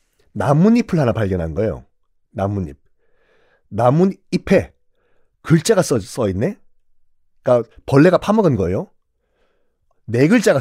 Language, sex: Korean, male